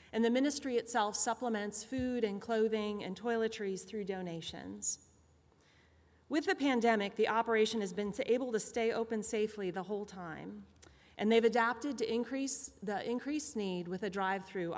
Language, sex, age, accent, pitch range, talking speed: English, female, 30-49, American, 175-230 Hz, 155 wpm